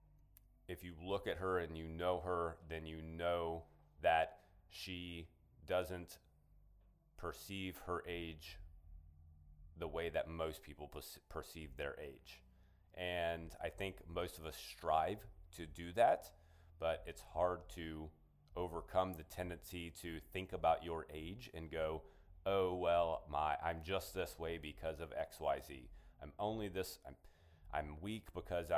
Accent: American